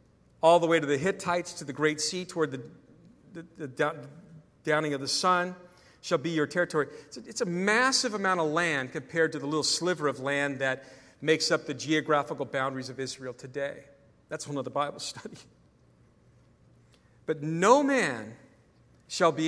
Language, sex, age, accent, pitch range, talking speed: English, male, 50-69, American, 145-190 Hz, 175 wpm